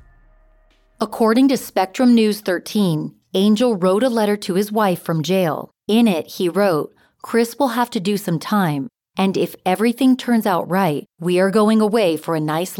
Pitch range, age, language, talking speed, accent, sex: 170-220 Hz, 40-59, English, 180 wpm, American, female